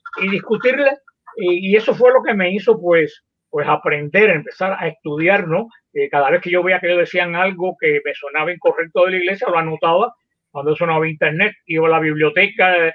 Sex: male